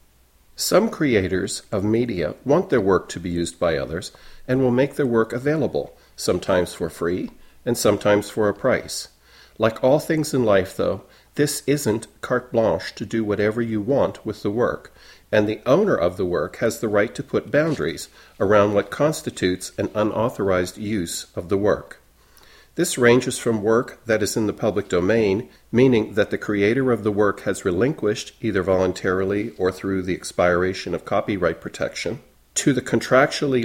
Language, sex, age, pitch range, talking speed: English, male, 50-69, 95-120 Hz, 170 wpm